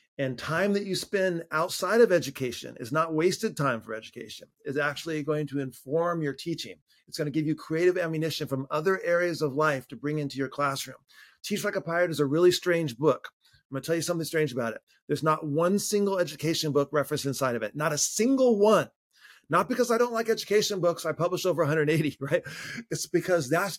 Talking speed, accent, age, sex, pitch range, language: 215 wpm, American, 30-49, male, 155-190 Hz, English